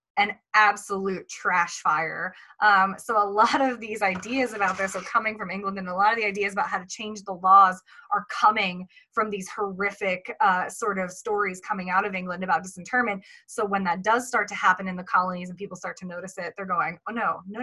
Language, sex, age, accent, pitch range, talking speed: English, female, 20-39, American, 190-230 Hz, 220 wpm